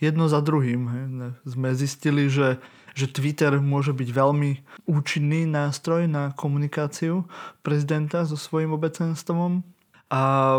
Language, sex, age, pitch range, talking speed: Slovak, male, 20-39, 130-155 Hz, 120 wpm